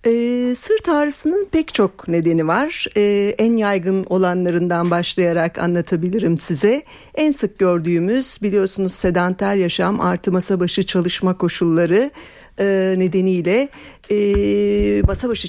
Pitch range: 175-215 Hz